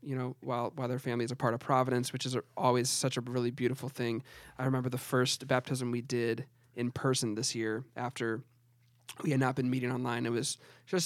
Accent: American